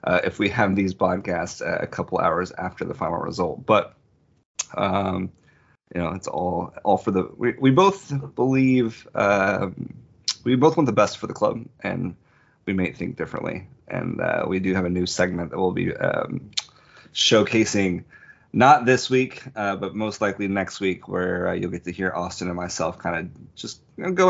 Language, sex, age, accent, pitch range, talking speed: English, male, 20-39, American, 90-105 Hz, 190 wpm